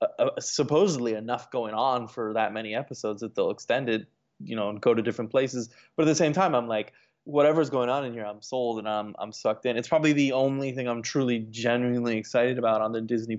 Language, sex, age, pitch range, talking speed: English, male, 20-39, 115-150 Hz, 235 wpm